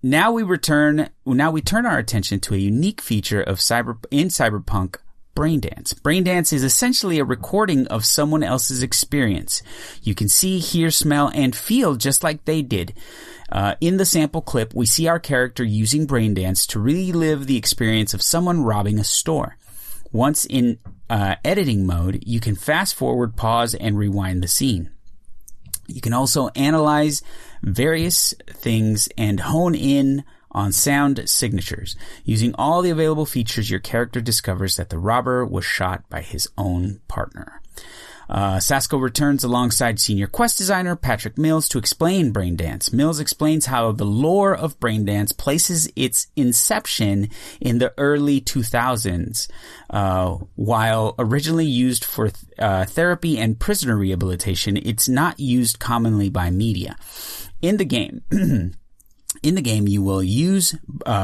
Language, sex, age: English, male, 30-49